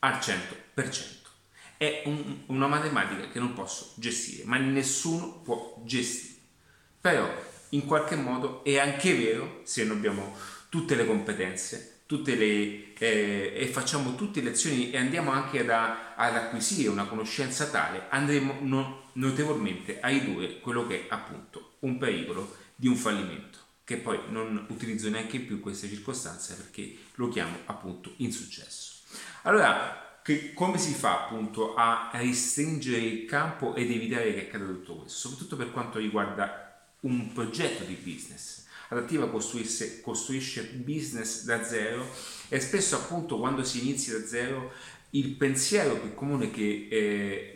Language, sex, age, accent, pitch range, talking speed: Italian, male, 30-49, native, 110-140 Hz, 140 wpm